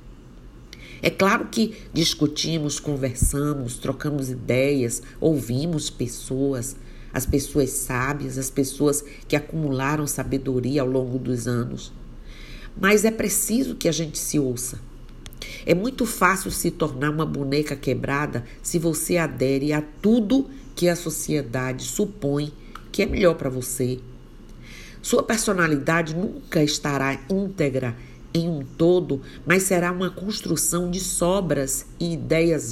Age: 50-69